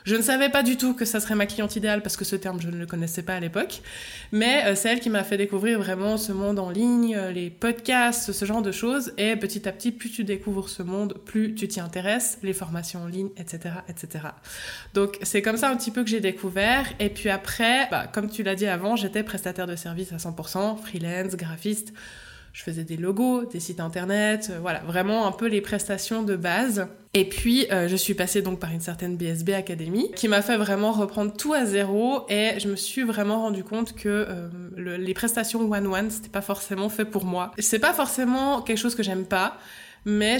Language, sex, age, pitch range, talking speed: French, female, 20-39, 190-225 Hz, 225 wpm